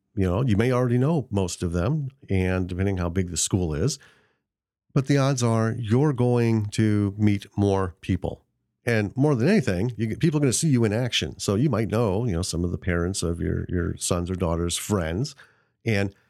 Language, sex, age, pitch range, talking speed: English, male, 40-59, 95-120 Hz, 205 wpm